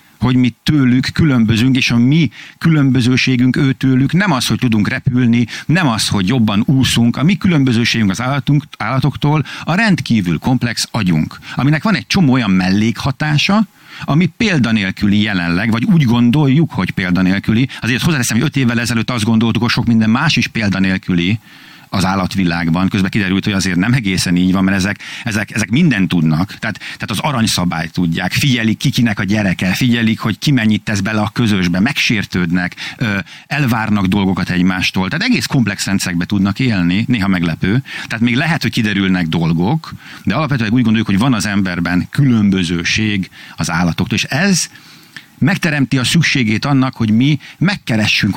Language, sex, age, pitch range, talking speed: Hungarian, male, 50-69, 100-140 Hz, 160 wpm